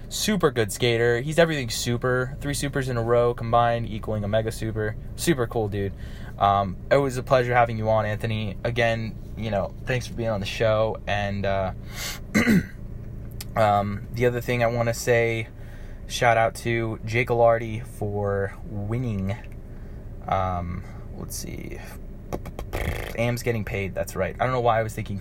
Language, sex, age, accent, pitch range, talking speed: English, male, 20-39, American, 100-115 Hz, 165 wpm